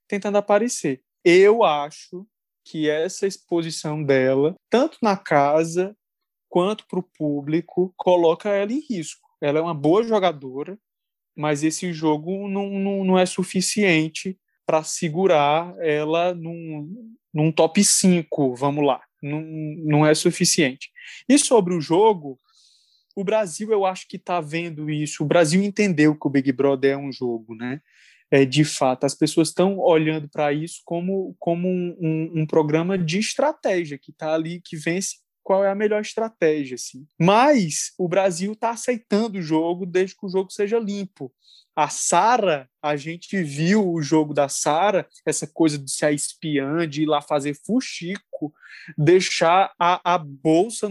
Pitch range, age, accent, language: 150-195 Hz, 20-39, Brazilian, Portuguese